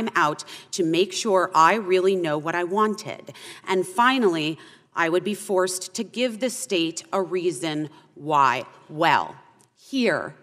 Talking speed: 145 wpm